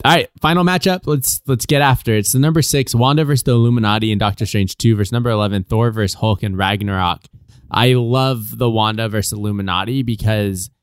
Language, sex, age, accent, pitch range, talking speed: English, male, 20-39, American, 105-135 Hz, 195 wpm